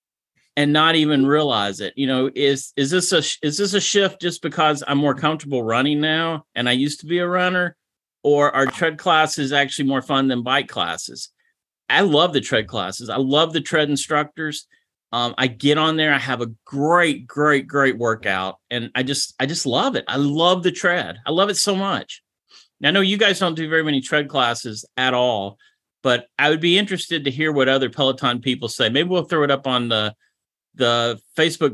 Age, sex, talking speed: 30-49, male, 210 wpm